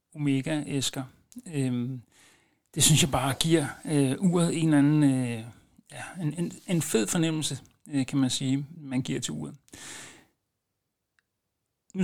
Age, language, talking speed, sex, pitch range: 60-79, Danish, 135 wpm, male, 130-150 Hz